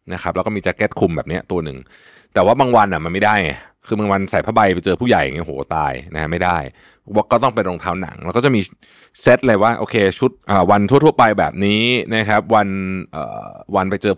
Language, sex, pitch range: Thai, male, 90-130 Hz